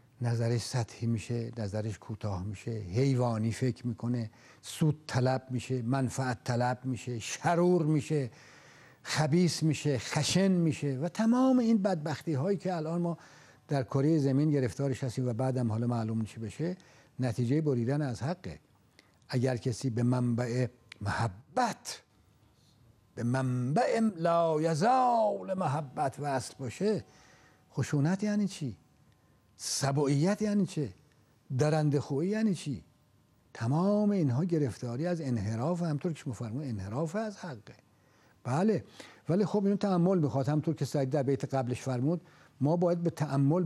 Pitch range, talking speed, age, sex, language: 120-160 Hz, 130 wpm, 60-79, male, Persian